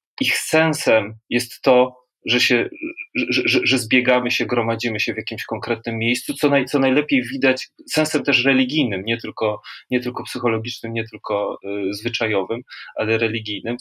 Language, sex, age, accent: Polish, male, 30-49, native